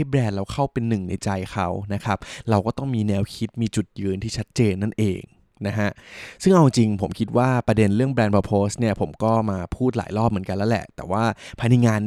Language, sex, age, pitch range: Thai, male, 20-39, 100-125 Hz